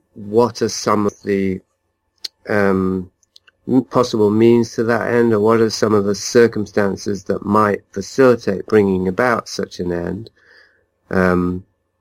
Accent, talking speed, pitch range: British, 135 wpm, 95-105 Hz